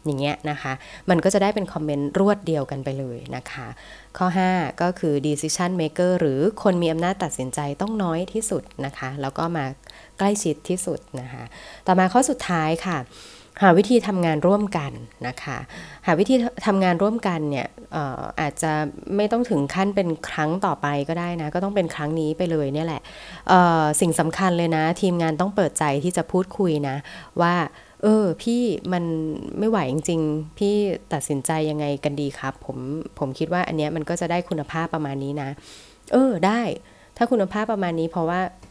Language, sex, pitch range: Thai, female, 145-185 Hz